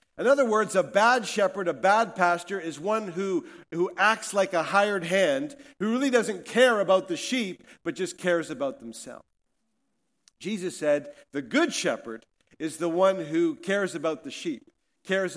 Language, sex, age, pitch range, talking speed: English, male, 50-69, 175-225 Hz, 170 wpm